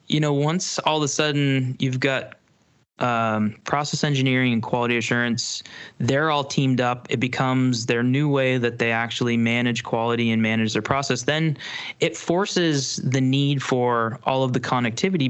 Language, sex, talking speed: English, male, 170 wpm